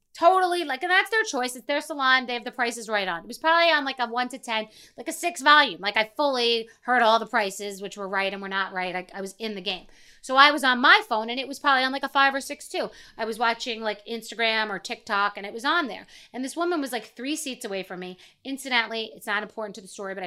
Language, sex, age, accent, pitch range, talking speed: English, female, 30-49, American, 210-275 Hz, 280 wpm